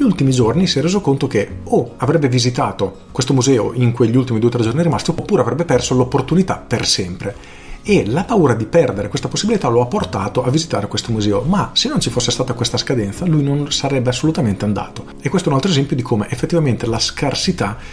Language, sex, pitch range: Italian, male, 110-150 Hz